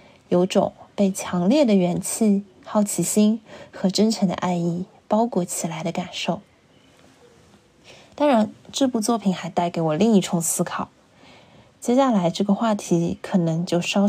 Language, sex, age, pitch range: Chinese, female, 20-39, 180-220 Hz